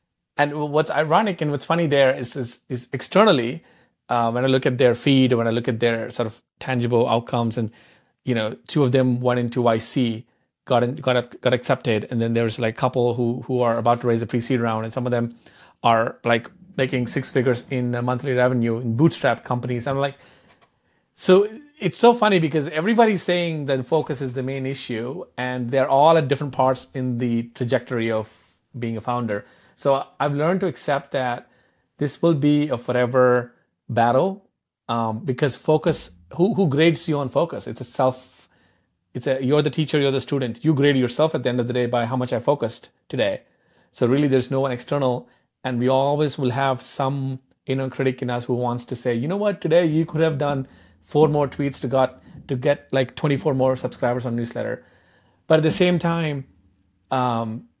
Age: 30-49